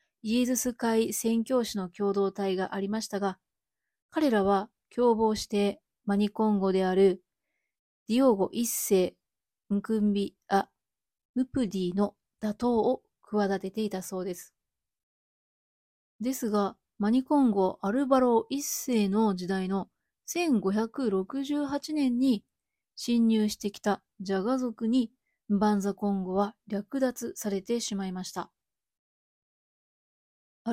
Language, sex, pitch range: Japanese, female, 195-250 Hz